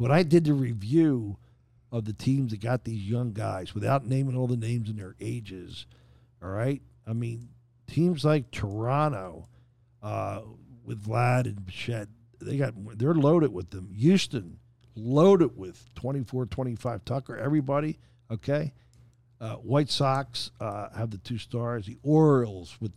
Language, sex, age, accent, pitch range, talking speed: English, male, 50-69, American, 115-135 Hz, 155 wpm